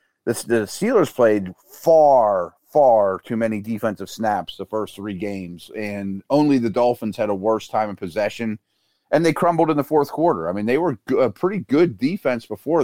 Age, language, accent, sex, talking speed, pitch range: 30-49, English, American, male, 180 wpm, 110-145 Hz